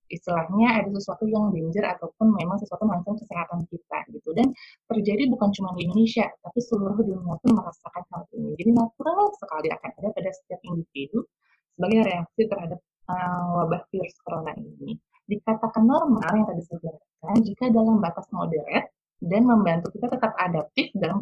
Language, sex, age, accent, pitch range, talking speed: Indonesian, female, 20-39, native, 175-225 Hz, 160 wpm